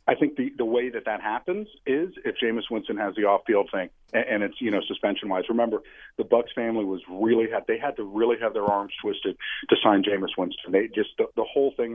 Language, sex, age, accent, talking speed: English, male, 50-69, American, 240 wpm